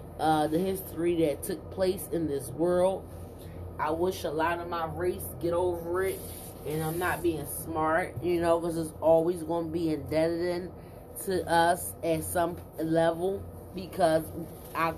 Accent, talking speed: American, 160 wpm